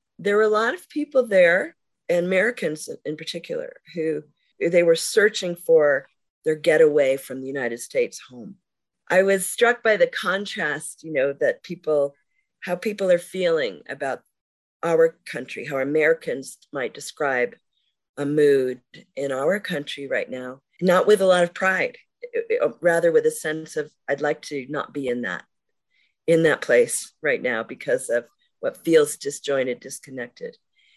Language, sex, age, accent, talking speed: English, female, 40-59, American, 155 wpm